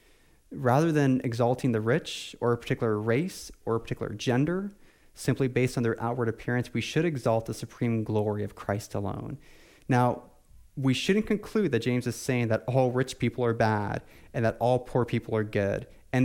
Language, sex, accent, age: English, male, American, 30-49